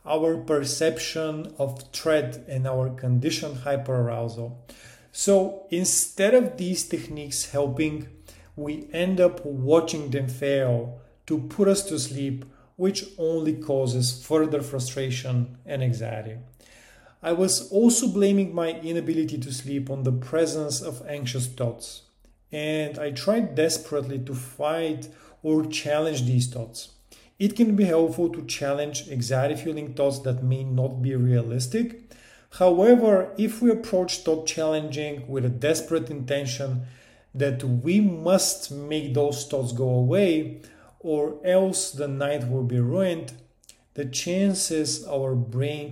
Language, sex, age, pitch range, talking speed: English, male, 40-59, 130-165 Hz, 125 wpm